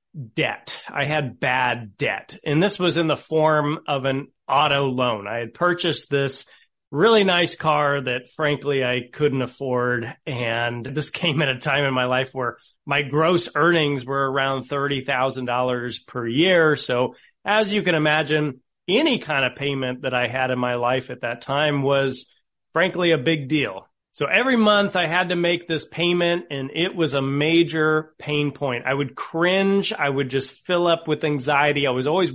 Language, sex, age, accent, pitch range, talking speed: English, male, 30-49, American, 130-155 Hz, 180 wpm